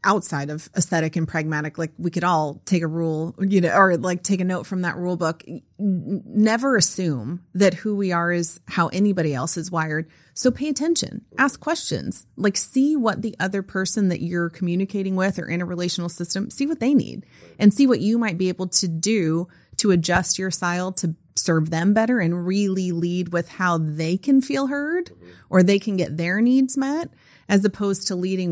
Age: 30-49